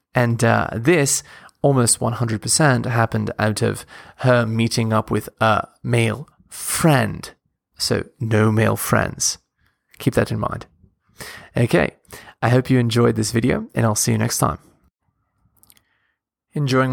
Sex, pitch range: male, 120-165 Hz